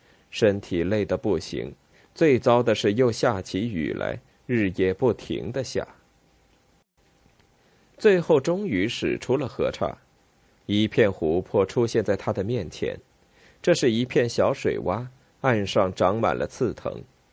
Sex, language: male, Chinese